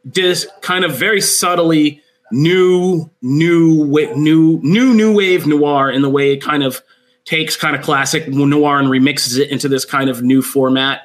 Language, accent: English, American